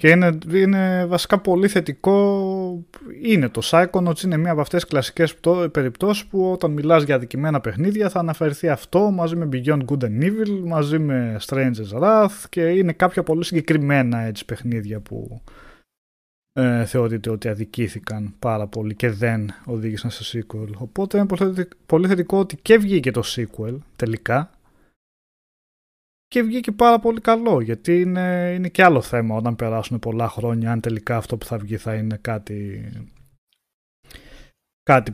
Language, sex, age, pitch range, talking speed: Greek, male, 20-39, 115-175 Hz, 155 wpm